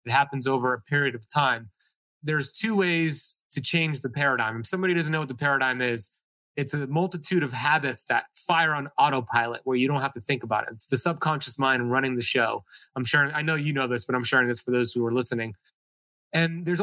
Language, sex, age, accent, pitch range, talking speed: English, male, 30-49, American, 130-160 Hz, 230 wpm